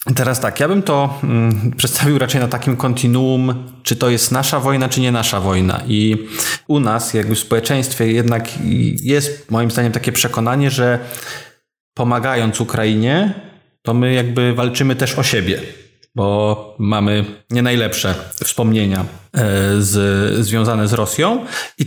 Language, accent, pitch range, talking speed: Polish, native, 115-140 Hz, 140 wpm